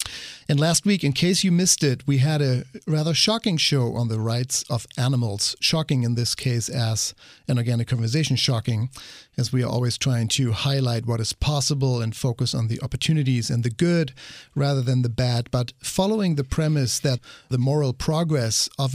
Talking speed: 185 wpm